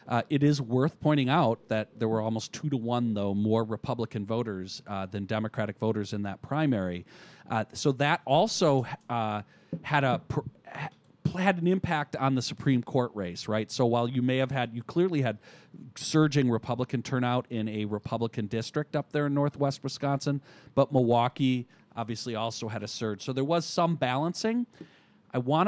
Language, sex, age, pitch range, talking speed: English, male, 40-59, 110-145 Hz, 175 wpm